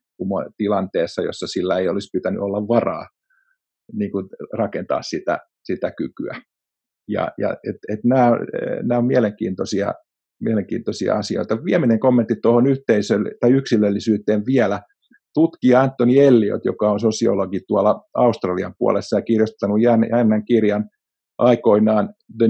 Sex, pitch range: male, 105-135 Hz